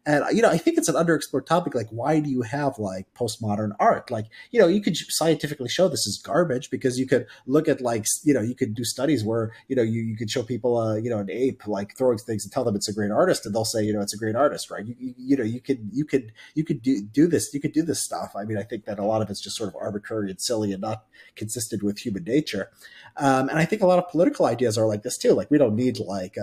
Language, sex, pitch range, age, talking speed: English, male, 105-135 Hz, 30-49, 295 wpm